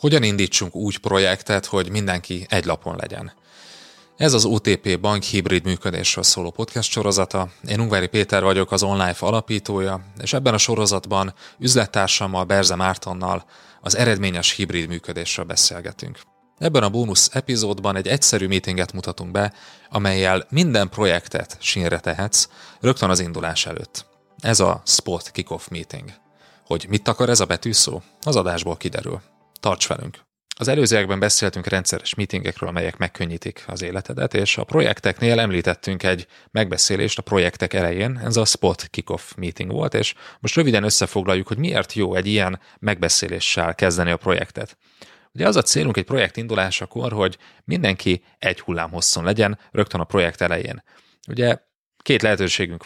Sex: male